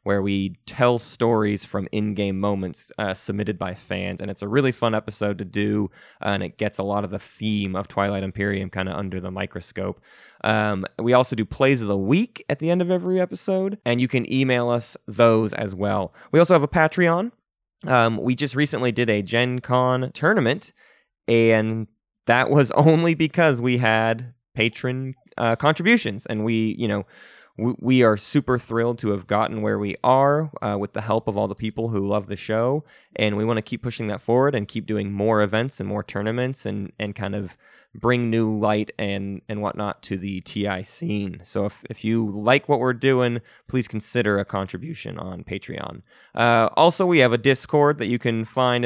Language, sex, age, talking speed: English, male, 20-39, 200 wpm